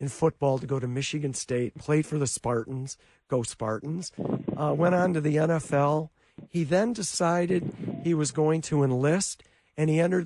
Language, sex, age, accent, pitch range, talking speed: English, male, 50-69, American, 130-170 Hz, 175 wpm